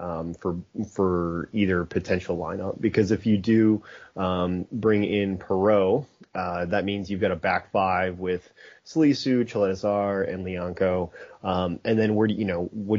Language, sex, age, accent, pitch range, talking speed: English, male, 30-49, American, 95-110 Hz, 160 wpm